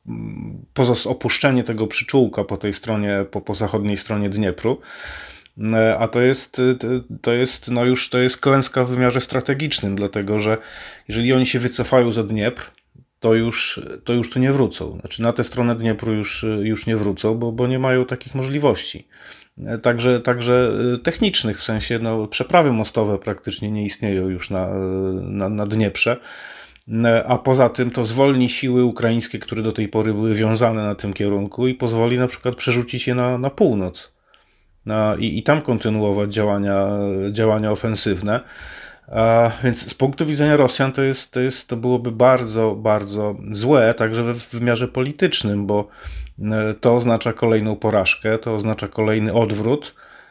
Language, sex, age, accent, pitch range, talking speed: Polish, male, 30-49, native, 105-125 Hz, 155 wpm